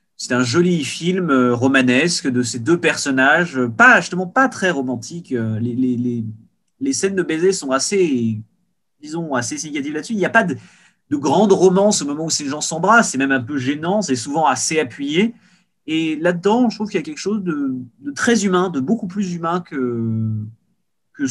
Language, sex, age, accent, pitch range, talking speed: French, male, 30-49, French, 125-190 Hz, 195 wpm